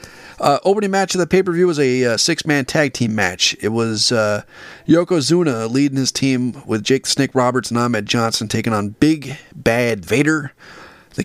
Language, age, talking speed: English, 30-49, 175 wpm